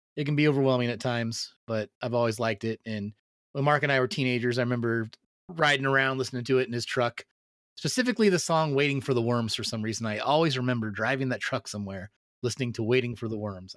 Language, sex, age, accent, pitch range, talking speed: English, male, 30-49, American, 110-135 Hz, 220 wpm